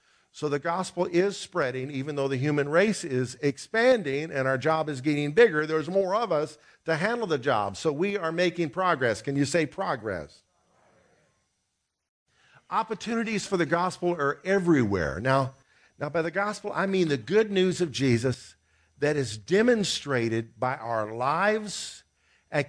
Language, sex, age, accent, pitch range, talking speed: English, male, 50-69, American, 135-190 Hz, 160 wpm